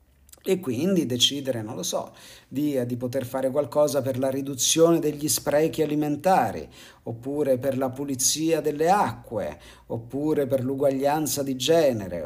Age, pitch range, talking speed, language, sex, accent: 50-69, 120-155 Hz, 135 wpm, Italian, male, native